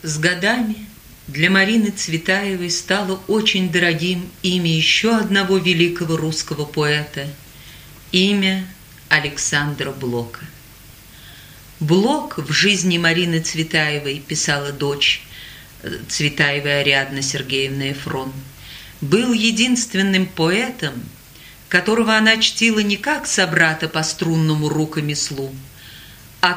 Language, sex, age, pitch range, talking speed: Russian, female, 40-59, 145-195 Hz, 95 wpm